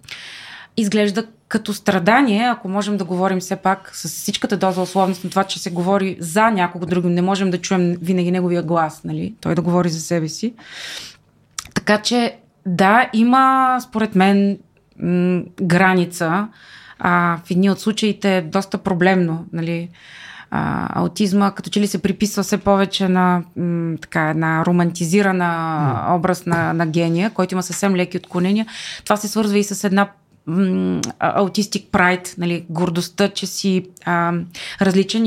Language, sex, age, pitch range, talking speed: Bulgarian, female, 20-39, 175-210 Hz, 150 wpm